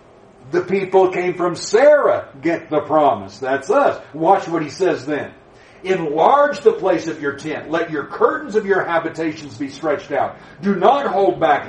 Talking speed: 175 wpm